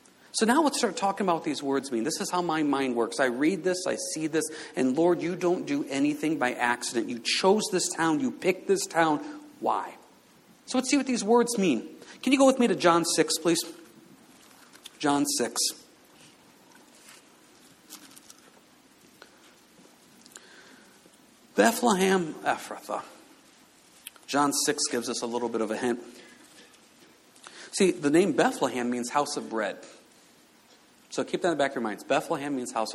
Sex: male